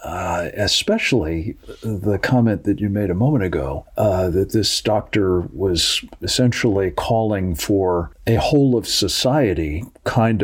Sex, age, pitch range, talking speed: male, 50-69, 90-115 Hz, 130 wpm